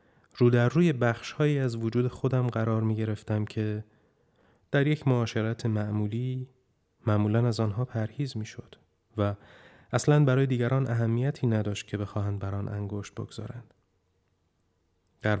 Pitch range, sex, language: 100-125 Hz, male, Persian